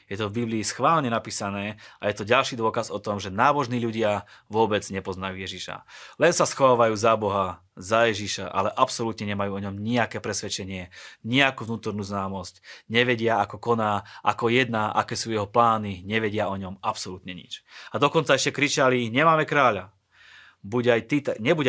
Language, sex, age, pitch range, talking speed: Slovak, male, 30-49, 100-120 Hz, 165 wpm